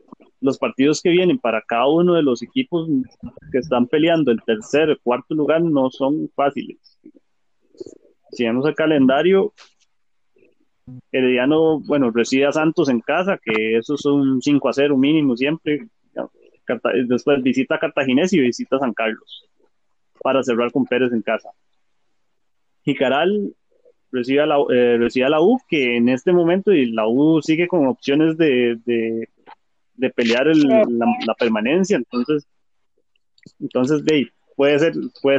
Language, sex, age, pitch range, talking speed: Spanish, male, 20-39, 125-165 Hz, 150 wpm